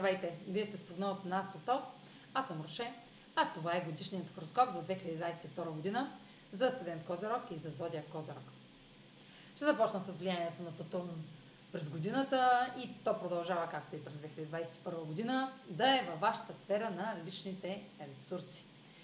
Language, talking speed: Bulgarian, 150 wpm